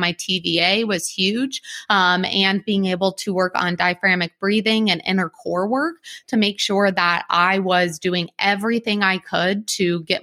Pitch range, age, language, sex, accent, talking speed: 175-205 Hz, 20-39, English, female, American, 170 wpm